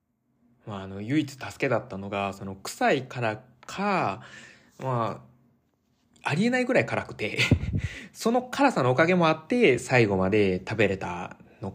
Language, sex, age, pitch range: Japanese, male, 20-39, 100-150 Hz